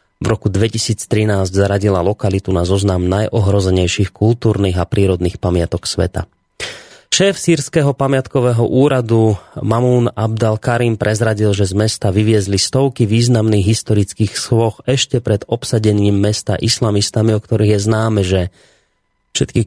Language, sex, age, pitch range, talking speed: Slovak, male, 30-49, 100-120 Hz, 120 wpm